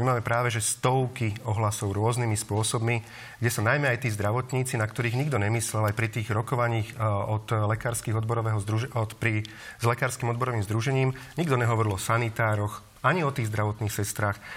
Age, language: 40-59, Slovak